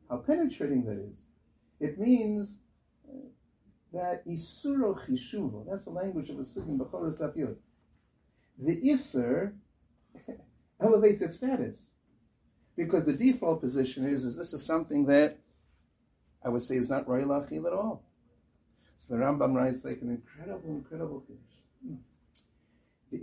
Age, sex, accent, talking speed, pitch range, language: 60-79, male, American, 130 wpm, 150-245 Hz, English